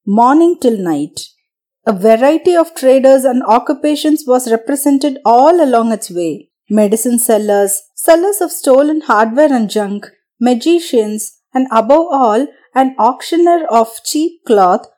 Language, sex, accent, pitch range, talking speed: Tamil, female, native, 230-305 Hz, 130 wpm